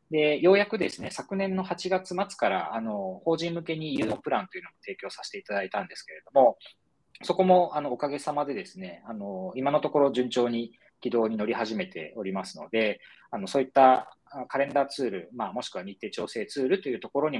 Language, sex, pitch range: Japanese, male, 130-190 Hz